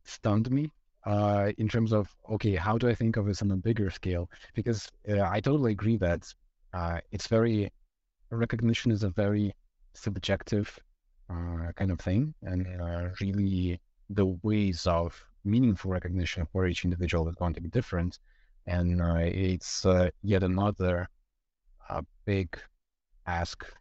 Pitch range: 90-105 Hz